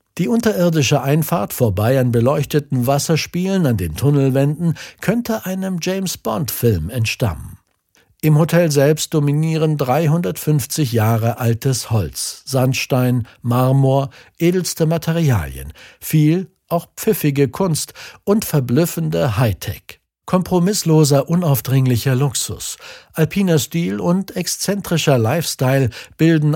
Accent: German